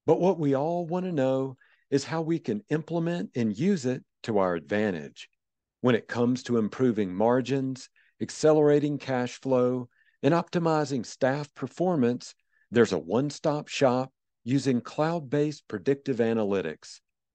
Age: 50-69